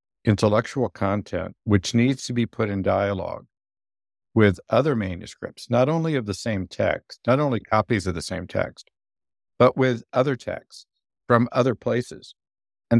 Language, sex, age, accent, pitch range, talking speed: English, male, 60-79, American, 95-125 Hz, 150 wpm